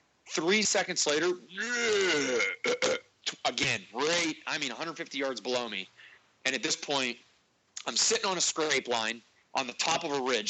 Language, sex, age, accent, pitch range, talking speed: English, male, 30-49, American, 120-165 Hz, 155 wpm